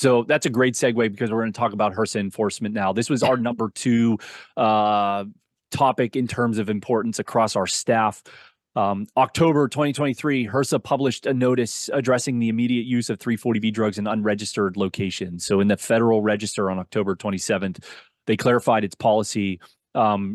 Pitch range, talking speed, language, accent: 105-125 Hz, 170 wpm, English, American